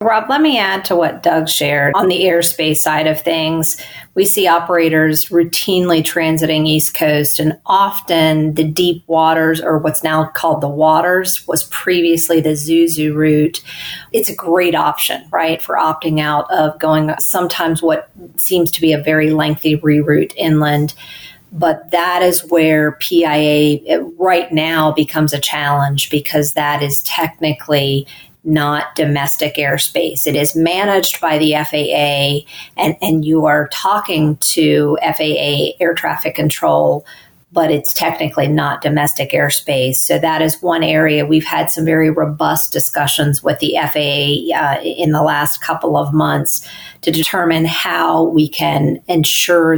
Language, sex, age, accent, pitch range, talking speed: English, female, 40-59, American, 150-165 Hz, 150 wpm